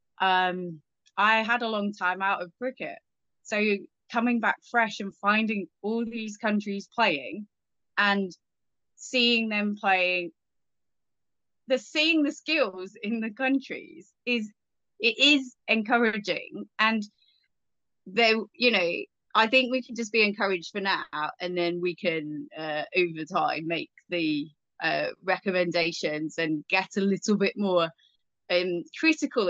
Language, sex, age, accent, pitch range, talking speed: English, female, 20-39, British, 185-235 Hz, 130 wpm